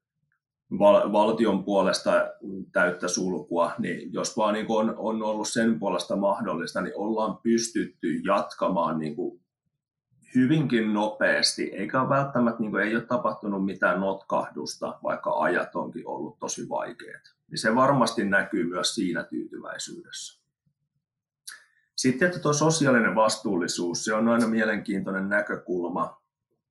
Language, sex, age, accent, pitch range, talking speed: Finnish, male, 30-49, native, 100-140 Hz, 120 wpm